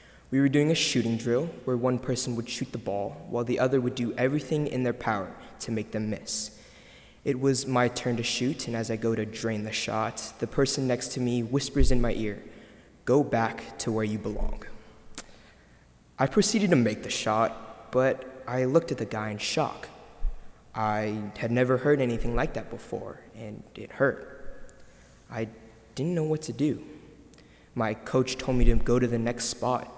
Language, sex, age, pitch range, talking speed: English, male, 20-39, 110-130 Hz, 190 wpm